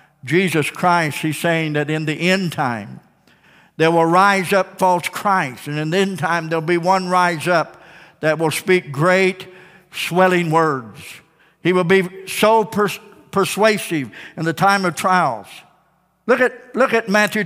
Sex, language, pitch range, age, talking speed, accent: male, English, 175-245 Hz, 60-79, 160 wpm, American